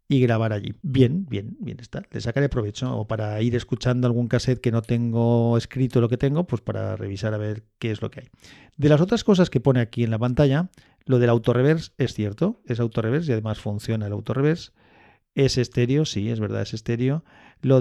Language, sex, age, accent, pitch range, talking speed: Spanish, male, 40-59, Spanish, 110-130 Hz, 220 wpm